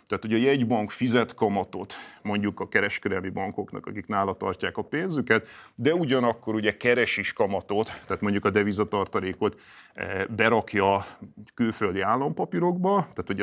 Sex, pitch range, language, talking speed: male, 95-120 Hz, Hungarian, 125 wpm